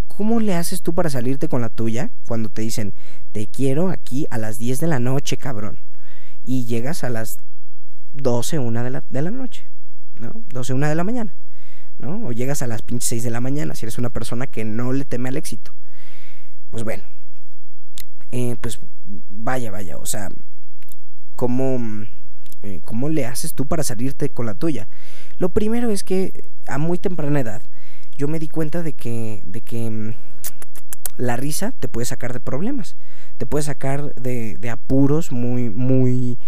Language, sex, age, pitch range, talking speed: Spanish, male, 20-39, 115-145 Hz, 175 wpm